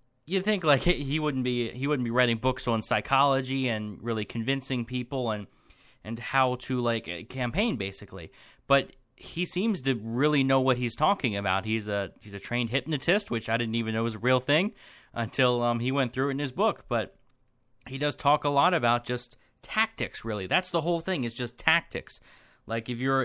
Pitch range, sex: 115-140 Hz, male